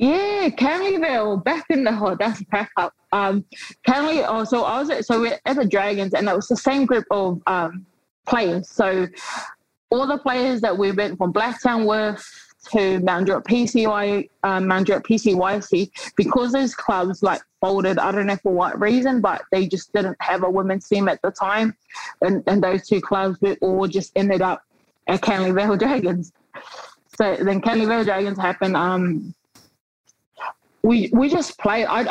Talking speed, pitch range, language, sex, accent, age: 170 wpm, 195-240 Hz, English, female, British, 20-39